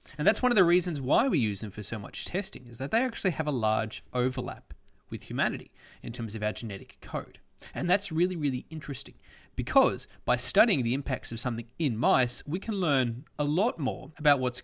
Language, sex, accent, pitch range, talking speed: English, male, Australian, 115-175 Hz, 215 wpm